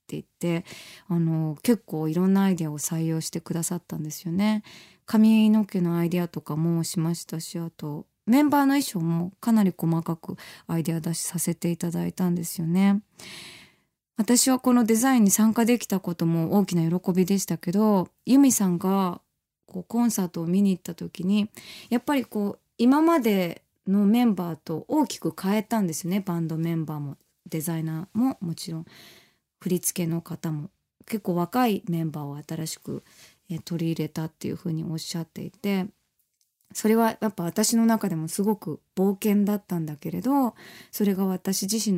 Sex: female